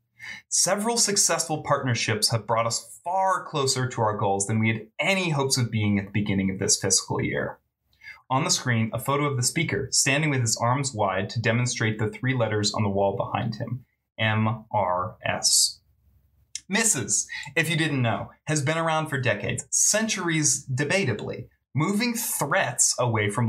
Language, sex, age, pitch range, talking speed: English, male, 20-39, 110-155 Hz, 165 wpm